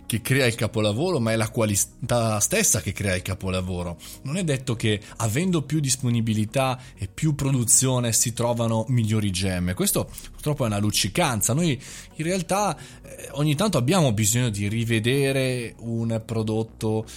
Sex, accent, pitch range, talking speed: male, native, 105-145 Hz, 155 wpm